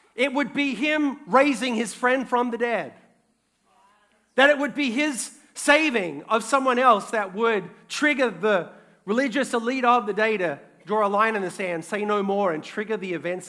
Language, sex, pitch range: English, male, 195-245 Hz